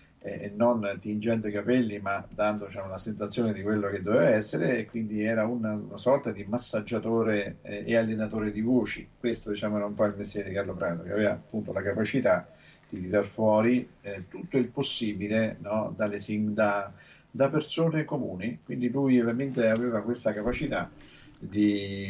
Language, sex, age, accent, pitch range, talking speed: Italian, male, 50-69, native, 100-120 Hz, 170 wpm